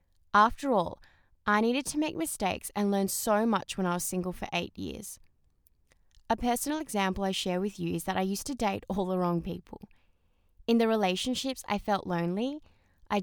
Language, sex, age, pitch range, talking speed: English, female, 20-39, 175-220 Hz, 190 wpm